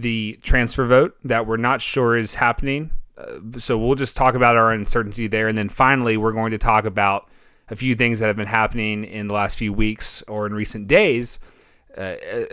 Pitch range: 100-120 Hz